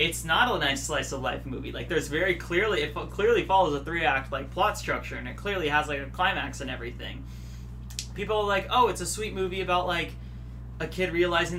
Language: English